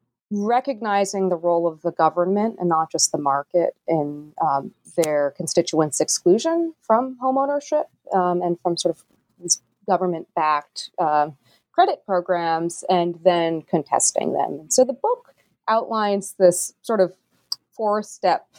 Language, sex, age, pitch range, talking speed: English, female, 30-49, 160-225 Hz, 125 wpm